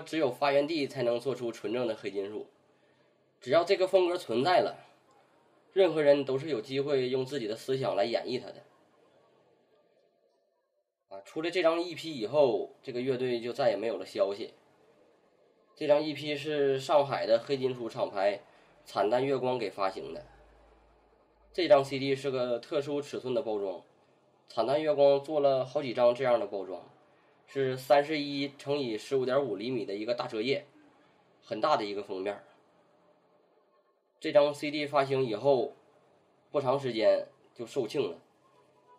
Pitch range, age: 125-150 Hz, 20-39